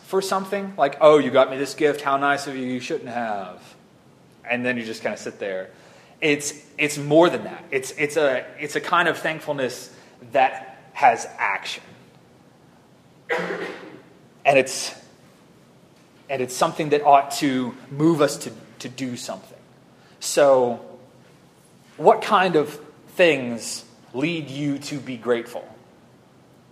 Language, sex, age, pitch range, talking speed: English, male, 30-49, 135-165 Hz, 145 wpm